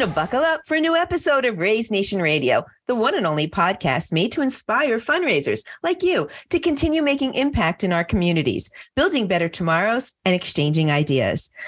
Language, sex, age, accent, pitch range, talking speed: English, female, 40-59, American, 160-265 Hz, 180 wpm